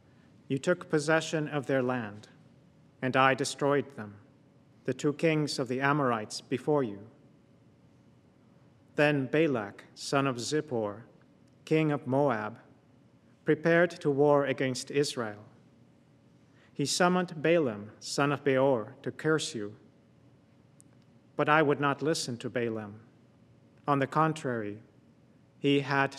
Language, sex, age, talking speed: English, male, 40-59, 120 wpm